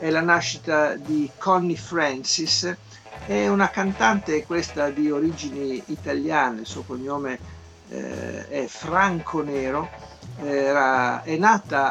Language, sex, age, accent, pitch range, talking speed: Italian, male, 60-79, native, 125-165 Hz, 115 wpm